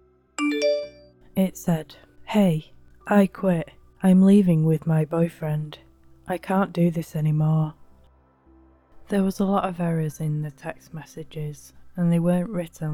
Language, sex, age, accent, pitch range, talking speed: English, female, 20-39, British, 145-190 Hz, 135 wpm